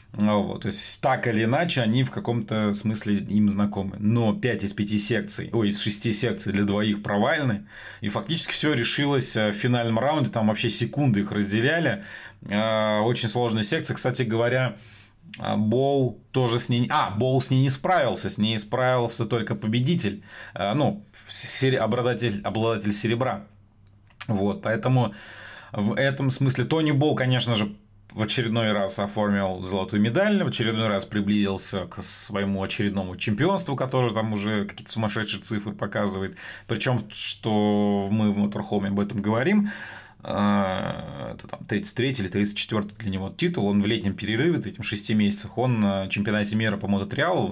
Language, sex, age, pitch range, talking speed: Russian, male, 30-49, 100-120 Hz, 150 wpm